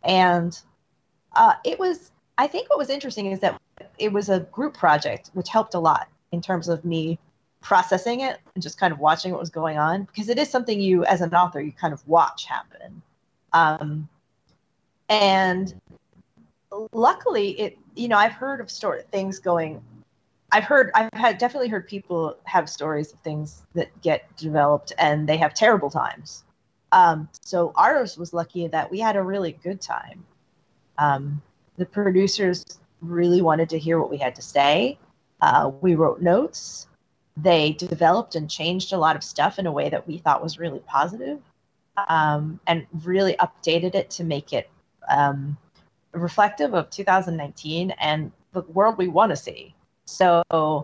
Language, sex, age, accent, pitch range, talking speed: English, female, 30-49, American, 160-205 Hz, 170 wpm